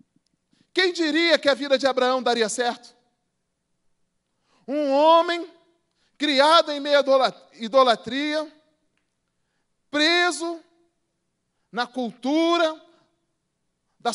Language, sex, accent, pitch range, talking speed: Portuguese, male, Brazilian, 235-295 Hz, 85 wpm